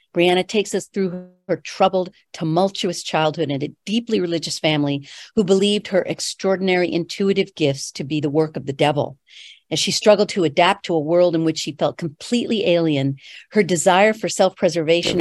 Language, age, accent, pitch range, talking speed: English, 50-69, American, 155-195 Hz, 175 wpm